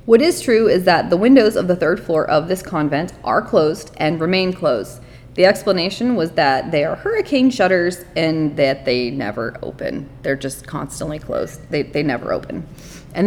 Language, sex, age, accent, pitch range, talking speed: English, female, 30-49, American, 155-195 Hz, 185 wpm